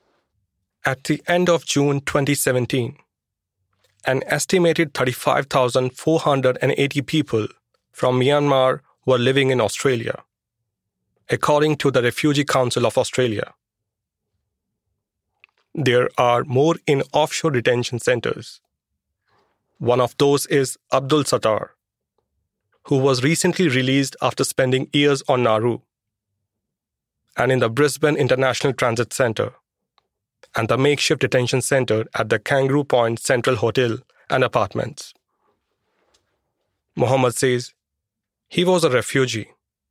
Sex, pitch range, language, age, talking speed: male, 115-145 Hz, English, 30-49, 105 wpm